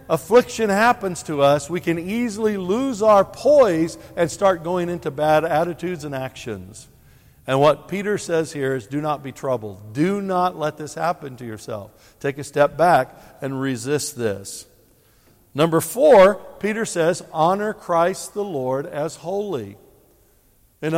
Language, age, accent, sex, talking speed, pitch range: English, 60-79, American, male, 150 wpm, 135-190 Hz